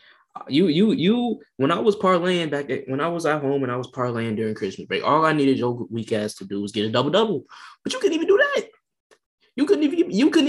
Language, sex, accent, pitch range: English, male, American, 105-170 Hz